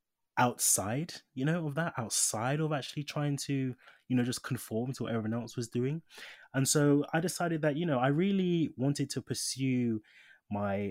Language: English